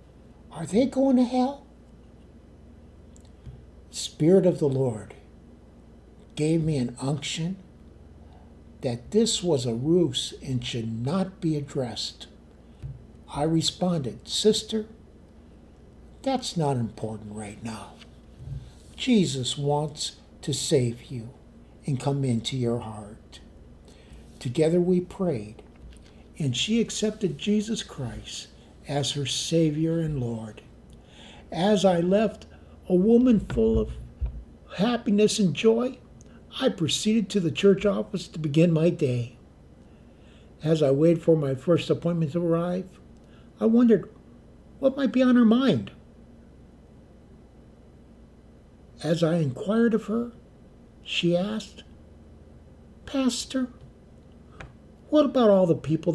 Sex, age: male, 60-79